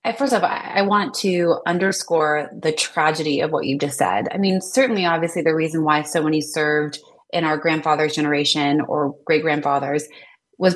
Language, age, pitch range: English, 30-49, 150-180 Hz